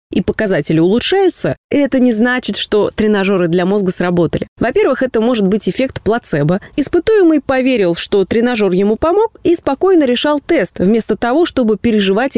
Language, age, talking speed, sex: Russian, 20-39, 150 wpm, female